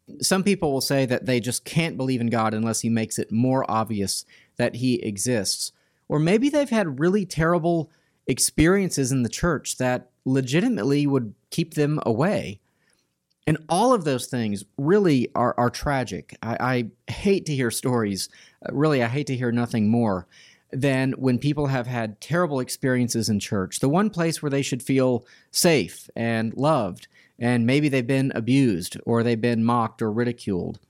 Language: English